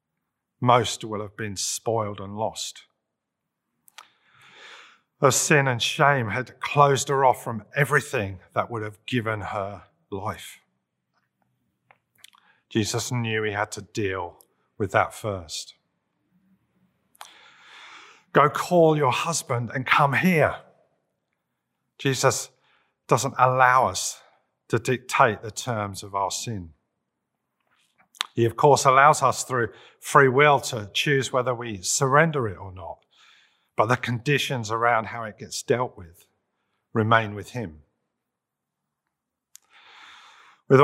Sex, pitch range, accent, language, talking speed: male, 110-135 Hz, British, English, 115 wpm